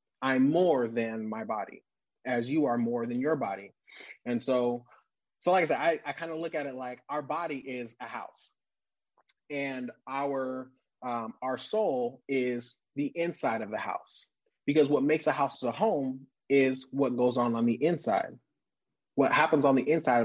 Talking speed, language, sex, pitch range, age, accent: 180 wpm, English, male, 120-155 Hz, 30-49, American